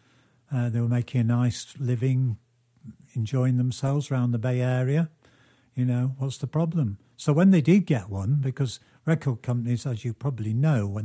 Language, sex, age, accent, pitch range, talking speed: English, male, 50-69, British, 110-135 Hz, 175 wpm